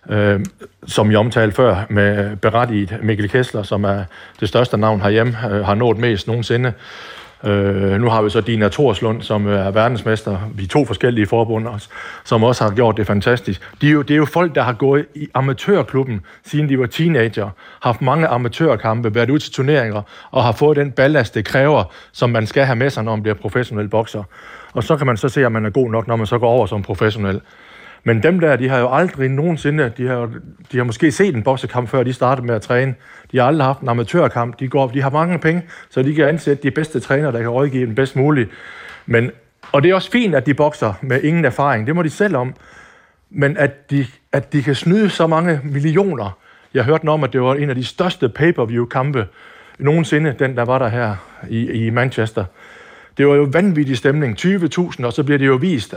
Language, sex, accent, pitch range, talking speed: Danish, male, native, 110-145 Hz, 225 wpm